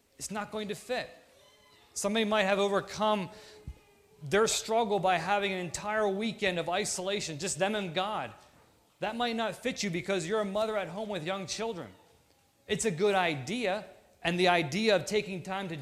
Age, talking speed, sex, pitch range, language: 30-49, 180 wpm, male, 155-205 Hz, English